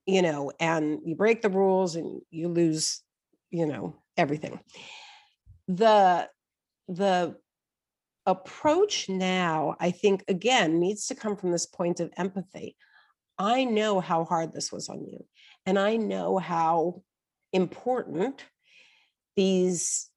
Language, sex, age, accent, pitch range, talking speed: English, female, 50-69, American, 175-220 Hz, 125 wpm